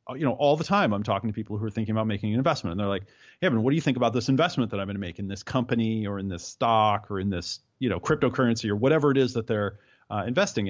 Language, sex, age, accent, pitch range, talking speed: English, male, 30-49, American, 110-135 Hz, 295 wpm